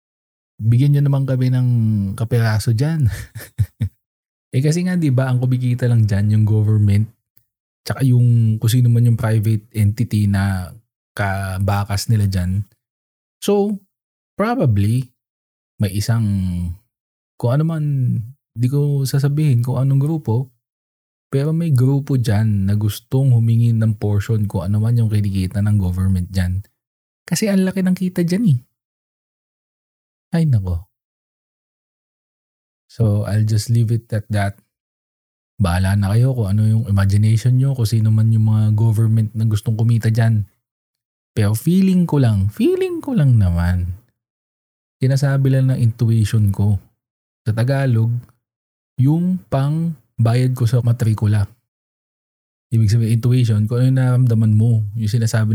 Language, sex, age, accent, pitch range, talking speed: Filipino, male, 20-39, native, 105-130 Hz, 135 wpm